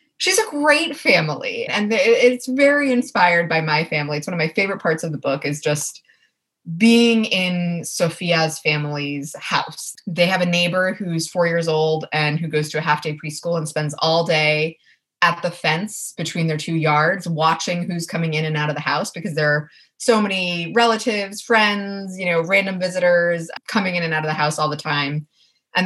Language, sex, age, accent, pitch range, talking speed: English, female, 20-39, American, 150-195 Hz, 195 wpm